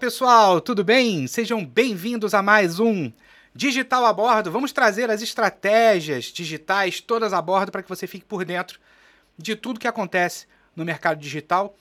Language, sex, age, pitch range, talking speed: Portuguese, male, 30-49, 150-195 Hz, 170 wpm